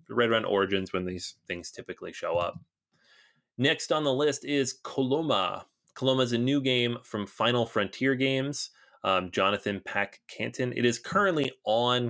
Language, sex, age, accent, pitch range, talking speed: English, male, 30-49, American, 95-125 Hz, 165 wpm